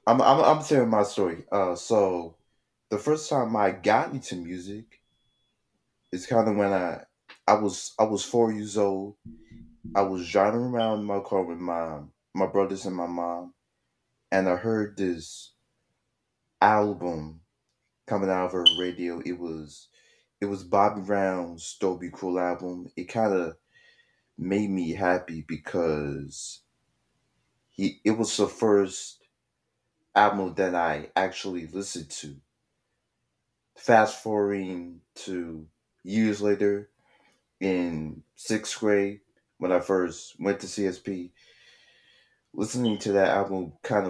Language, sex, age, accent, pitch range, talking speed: English, male, 30-49, American, 85-105 Hz, 130 wpm